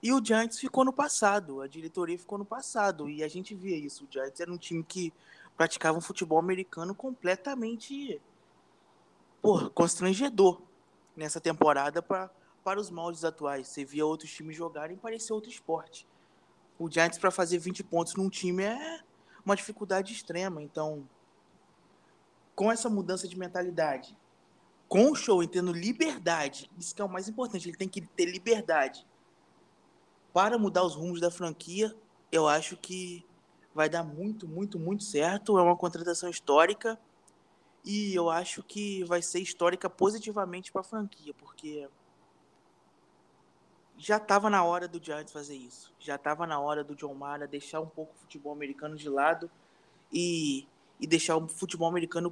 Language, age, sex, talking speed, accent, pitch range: Portuguese, 20-39, male, 160 wpm, Brazilian, 165-205 Hz